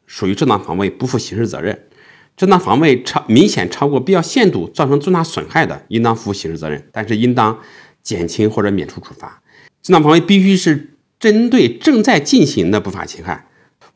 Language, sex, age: Chinese, male, 50-69